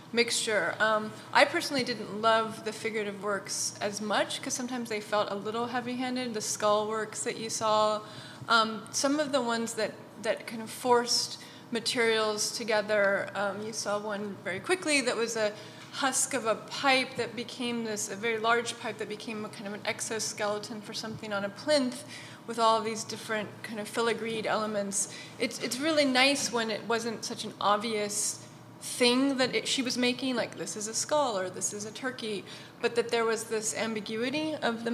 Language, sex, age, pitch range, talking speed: English, female, 20-39, 210-240 Hz, 190 wpm